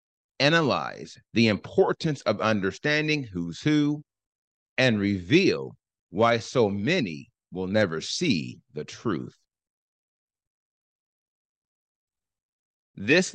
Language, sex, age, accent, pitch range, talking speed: English, male, 30-49, American, 100-145 Hz, 80 wpm